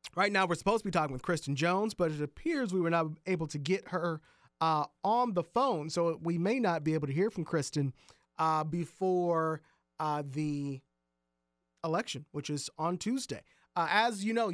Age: 40-59